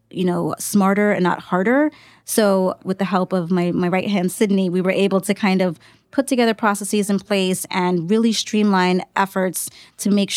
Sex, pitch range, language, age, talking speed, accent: female, 180-210 Hz, English, 20-39, 190 wpm, American